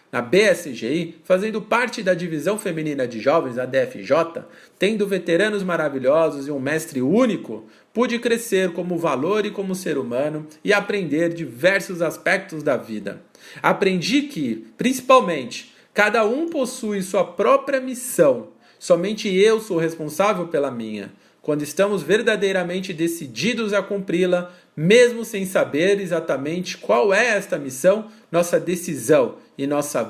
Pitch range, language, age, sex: 155-205 Hz, Portuguese, 50-69, male